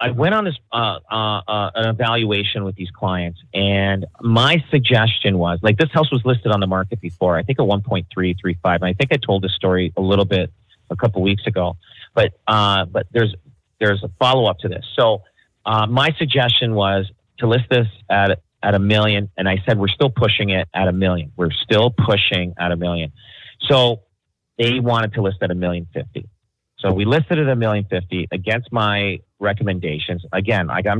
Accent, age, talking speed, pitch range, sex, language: American, 30-49, 195 wpm, 95-115 Hz, male, English